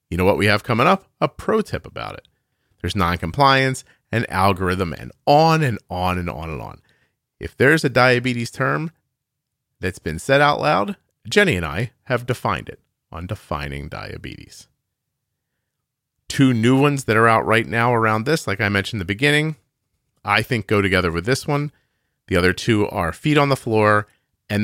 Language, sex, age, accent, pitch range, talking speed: English, male, 40-59, American, 95-130 Hz, 185 wpm